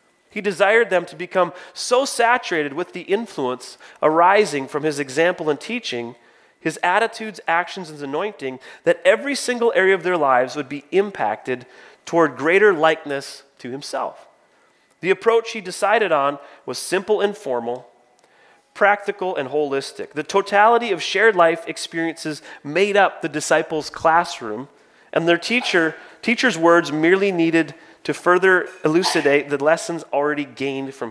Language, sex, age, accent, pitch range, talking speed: English, male, 30-49, American, 150-215 Hz, 145 wpm